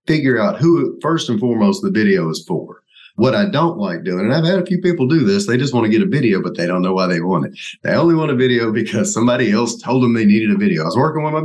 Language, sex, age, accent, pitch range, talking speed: English, male, 30-49, American, 115-180 Hz, 300 wpm